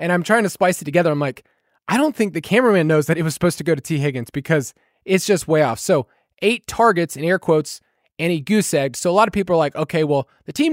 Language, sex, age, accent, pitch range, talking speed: English, male, 20-39, American, 150-195 Hz, 275 wpm